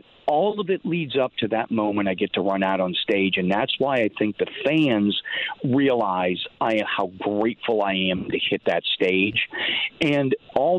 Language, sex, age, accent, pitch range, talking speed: English, male, 40-59, American, 105-135 Hz, 190 wpm